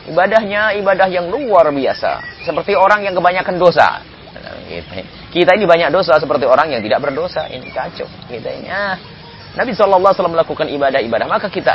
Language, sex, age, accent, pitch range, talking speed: English, male, 30-49, Indonesian, 140-200 Hz, 145 wpm